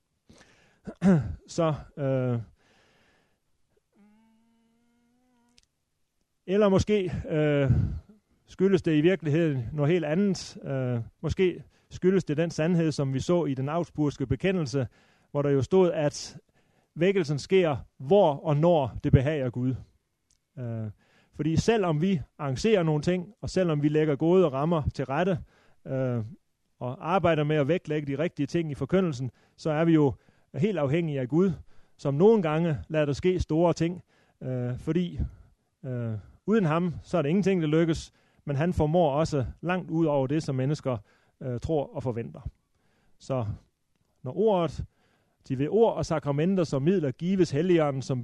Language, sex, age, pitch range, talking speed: Danish, male, 30-49, 135-180 Hz, 150 wpm